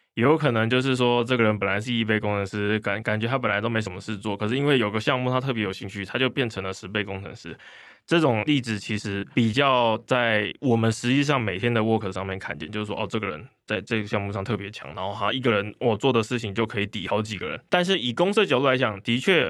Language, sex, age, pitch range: Chinese, male, 20-39, 105-130 Hz